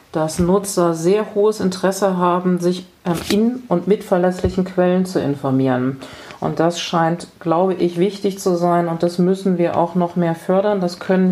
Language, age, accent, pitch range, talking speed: German, 40-59, German, 160-185 Hz, 170 wpm